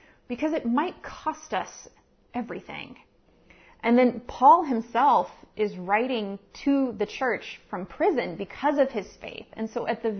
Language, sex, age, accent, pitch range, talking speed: English, female, 30-49, American, 210-255 Hz, 145 wpm